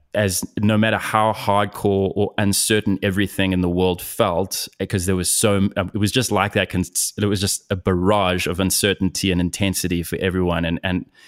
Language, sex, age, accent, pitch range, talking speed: English, male, 20-39, Australian, 90-105 Hz, 180 wpm